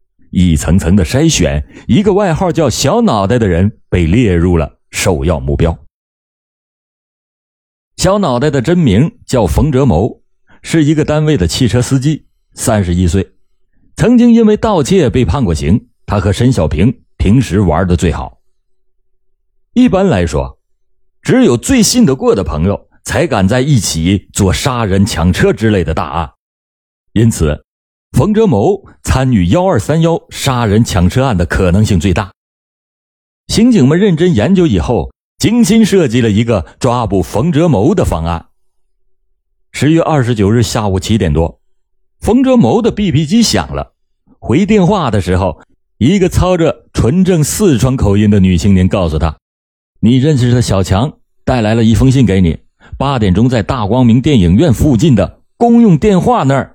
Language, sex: Chinese, male